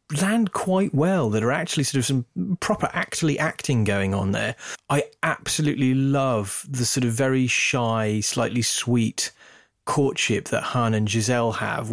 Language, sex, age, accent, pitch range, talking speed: English, male, 30-49, British, 110-125 Hz, 155 wpm